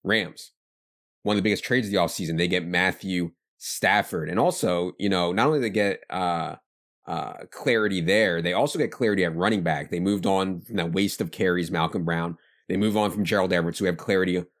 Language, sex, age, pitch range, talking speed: English, male, 30-49, 85-100 Hz, 215 wpm